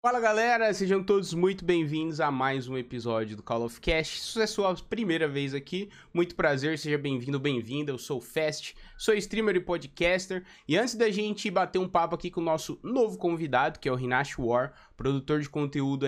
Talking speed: 200 wpm